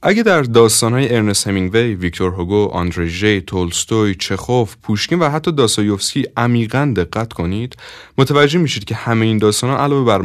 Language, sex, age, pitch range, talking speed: Persian, male, 30-49, 90-125 Hz, 150 wpm